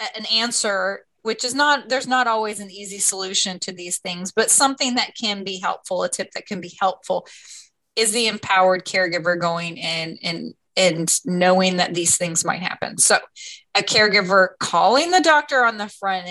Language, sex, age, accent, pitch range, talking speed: English, female, 30-49, American, 185-220 Hz, 180 wpm